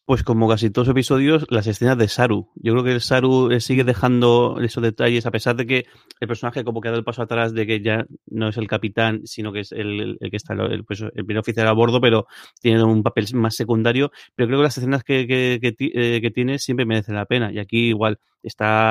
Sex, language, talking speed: male, Spanish, 245 wpm